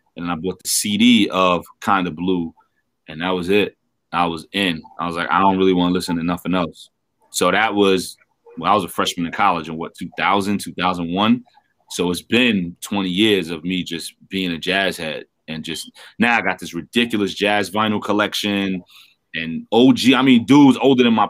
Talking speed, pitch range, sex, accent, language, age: 205 wpm, 90-110 Hz, male, American, English, 30-49